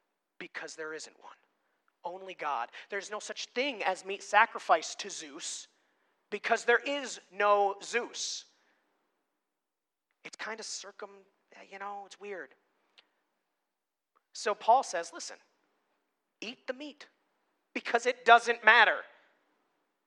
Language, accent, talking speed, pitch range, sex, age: English, American, 115 wpm, 175-230 Hz, male, 30-49